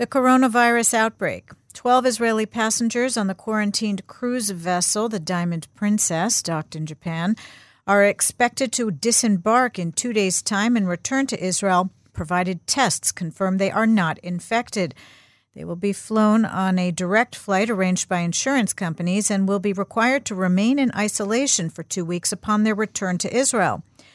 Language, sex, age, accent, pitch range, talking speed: English, female, 50-69, American, 175-220 Hz, 160 wpm